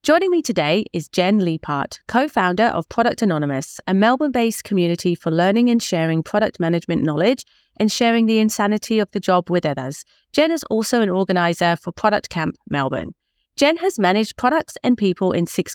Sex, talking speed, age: female, 175 wpm, 30-49